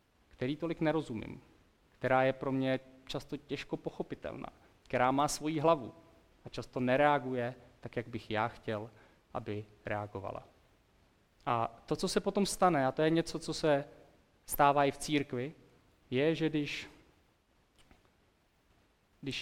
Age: 30-49